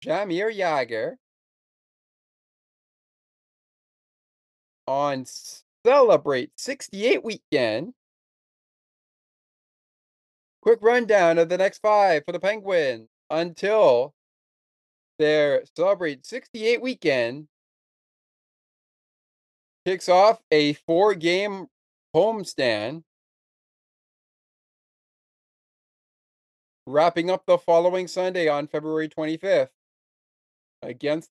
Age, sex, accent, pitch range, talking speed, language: 40-59, male, American, 155-230 Hz, 70 wpm, English